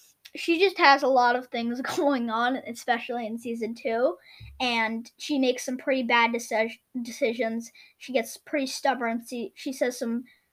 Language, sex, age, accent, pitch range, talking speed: English, female, 10-29, American, 240-305 Hz, 160 wpm